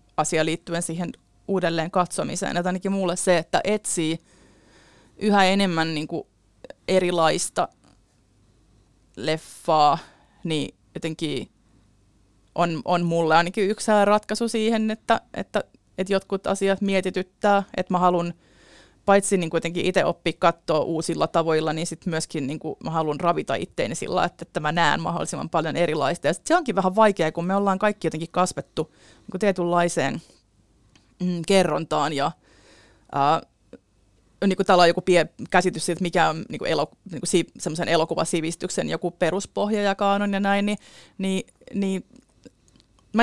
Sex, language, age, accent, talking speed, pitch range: female, Finnish, 30-49, native, 135 wpm, 160-195 Hz